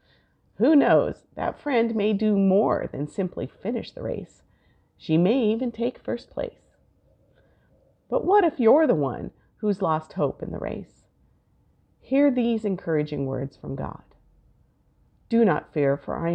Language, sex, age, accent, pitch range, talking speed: English, female, 50-69, American, 140-210 Hz, 150 wpm